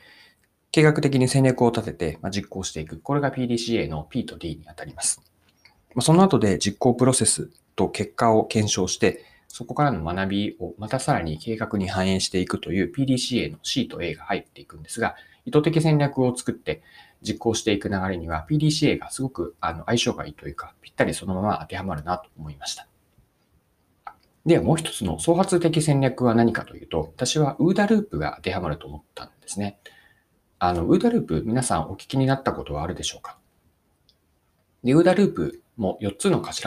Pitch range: 95-150 Hz